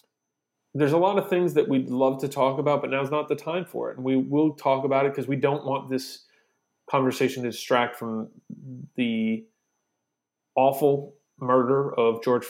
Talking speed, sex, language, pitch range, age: 180 wpm, male, English, 120-140 Hz, 30-49